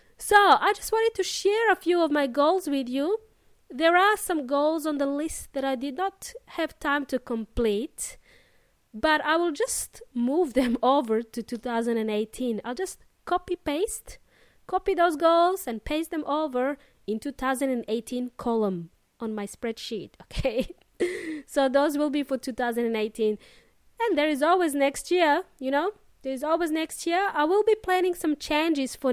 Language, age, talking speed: English, 20-39, 165 wpm